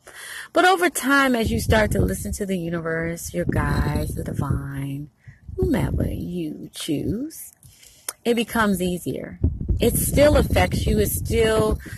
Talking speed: 135 wpm